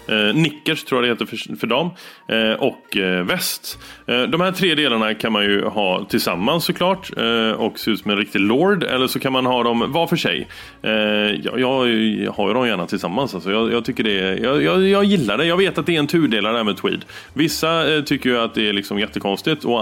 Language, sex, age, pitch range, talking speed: Swedish, male, 30-49, 105-145 Hz, 245 wpm